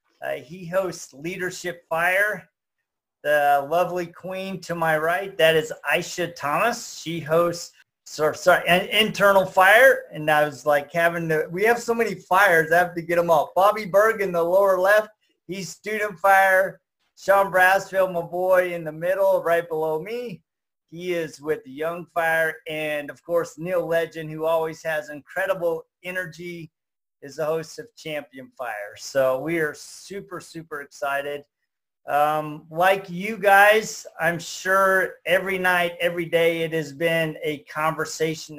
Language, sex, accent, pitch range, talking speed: English, male, American, 155-185 Hz, 150 wpm